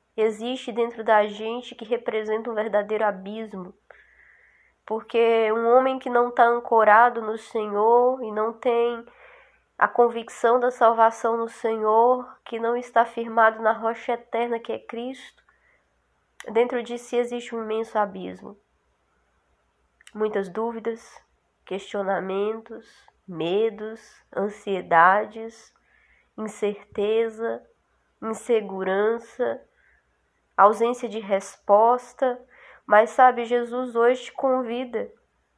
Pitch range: 205-240 Hz